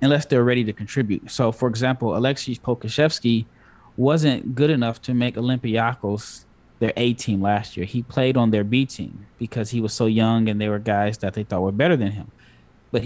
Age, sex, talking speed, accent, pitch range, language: 10-29, male, 200 wpm, American, 110-125 Hz, English